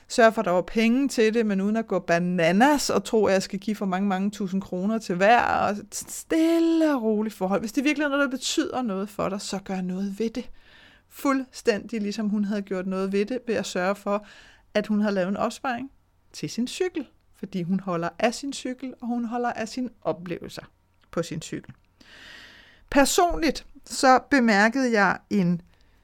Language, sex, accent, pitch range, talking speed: Danish, female, native, 180-235 Hz, 205 wpm